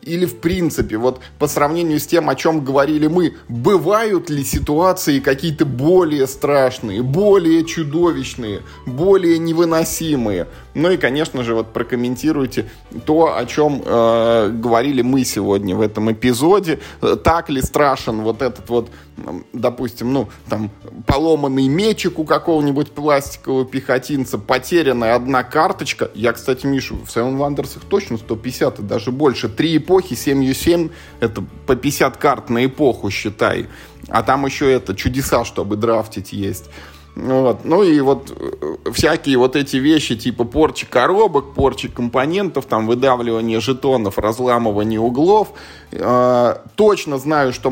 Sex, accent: male, native